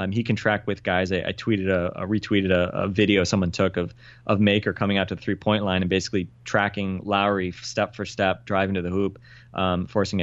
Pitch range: 95-110 Hz